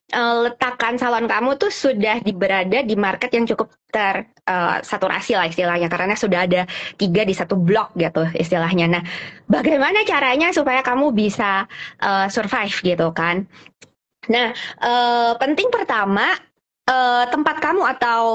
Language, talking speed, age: English, 140 wpm, 20-39